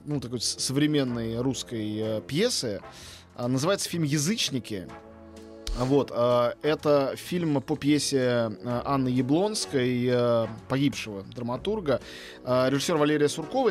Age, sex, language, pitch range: 20-39, male, Russian, 125-165 Hz